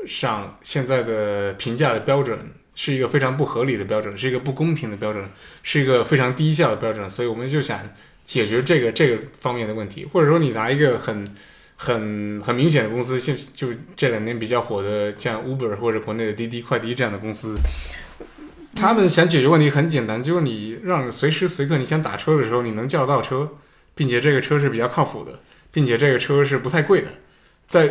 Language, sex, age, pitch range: Chinese, male, 20-39, 115-150 Hz